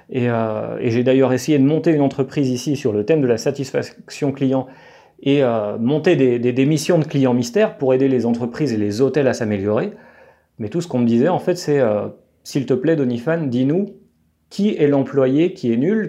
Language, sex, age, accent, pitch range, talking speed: French, male, 40-59, French, 125-160 Hz, 215 wpm